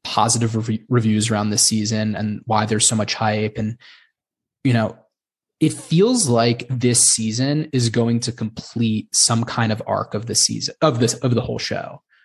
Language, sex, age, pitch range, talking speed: English, male, 20-39, 110-130 Hz, 175 wpm